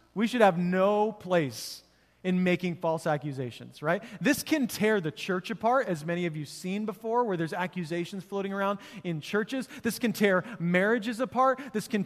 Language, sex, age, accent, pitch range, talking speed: English, male, 30-49, American, 175-225 Hz, 185 wpm